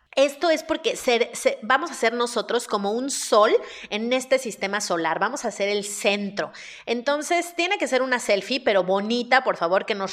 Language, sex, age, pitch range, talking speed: Spanish, female, 30-49, 200-260 Hz, 195 wpm